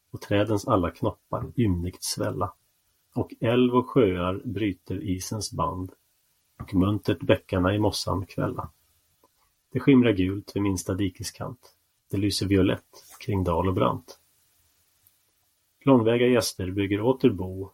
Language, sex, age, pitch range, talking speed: Swedish, male, 30-49, 90-110 Hz, 120 wpm